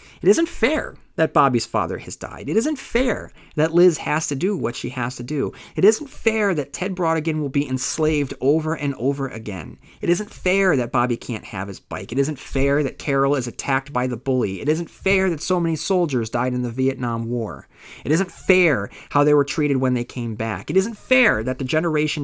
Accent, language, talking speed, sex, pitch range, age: American, English, 220 wpm, male, 110-150 Hz, 30-49